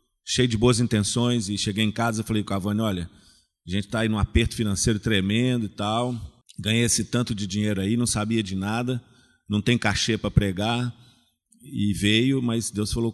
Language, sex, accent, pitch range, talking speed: Portuguese, male, Brazilian, 105-125 Hz, 195 wpm